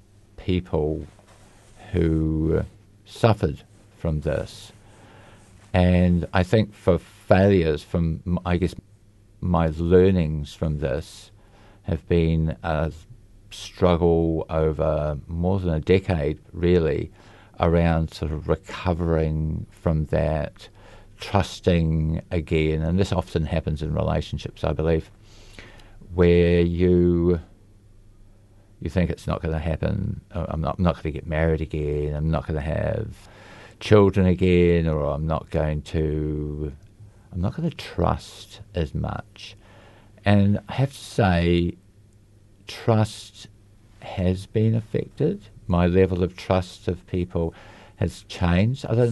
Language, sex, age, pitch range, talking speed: English, male, 50-69, 80-105 Hz, 120 wpm